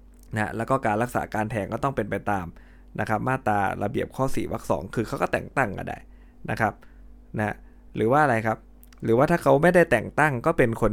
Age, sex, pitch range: 20-39, male, 95-120 Hz